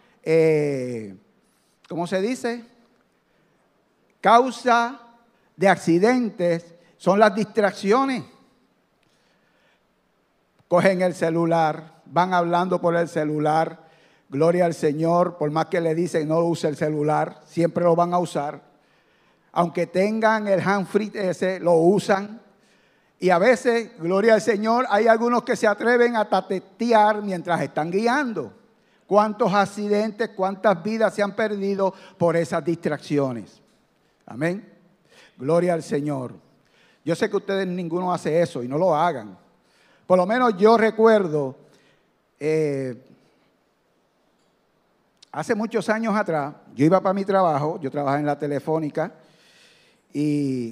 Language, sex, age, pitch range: Spanish, male, 50-69, 160-210 Hz